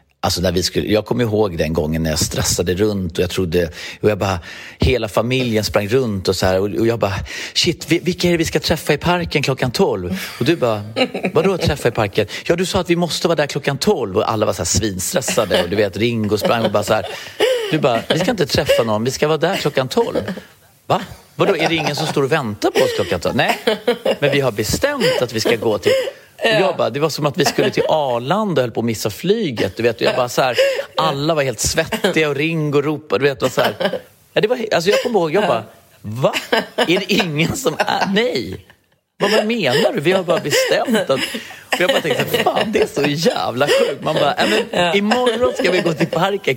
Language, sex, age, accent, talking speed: Swedish, male, 30-49, native, 245 wpm